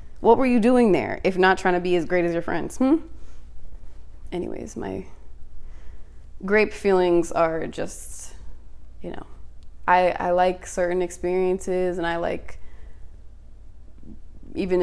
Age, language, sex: 20-39, English, female